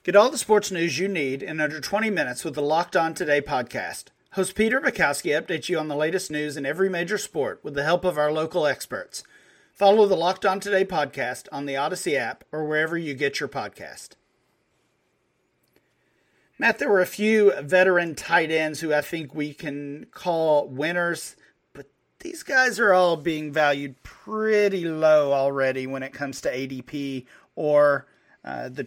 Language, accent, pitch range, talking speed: English, American, 145-185 Hz, 180 wpm